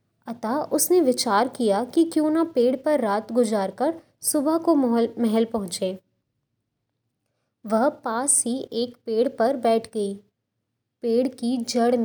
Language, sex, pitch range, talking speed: Hindi, female, 210-270 Hz, 135 wpm